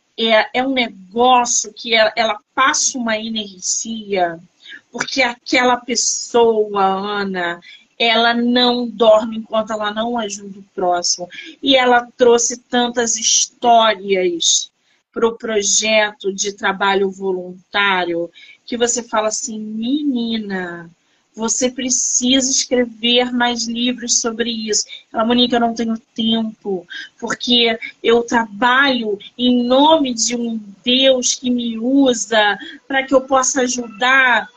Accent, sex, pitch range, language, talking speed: Brazilian, female, 220-265 Hz, Portuguese, 120 wpm